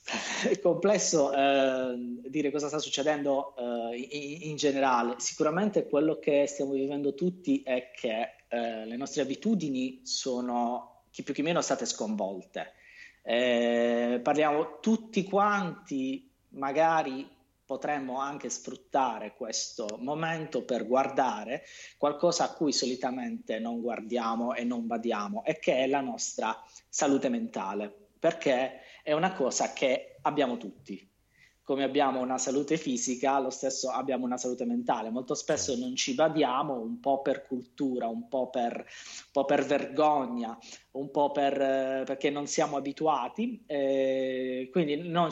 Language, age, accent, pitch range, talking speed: Italian, 30-49, native, 125-160 Hz, 135 wpm